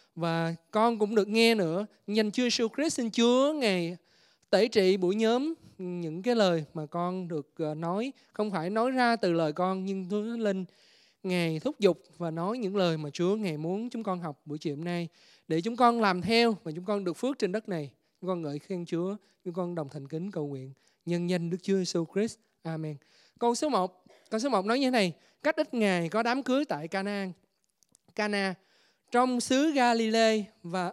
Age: 20-39